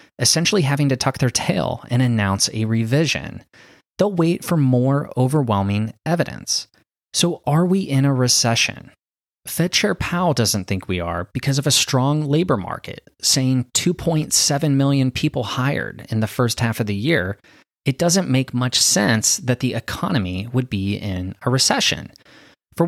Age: 30-49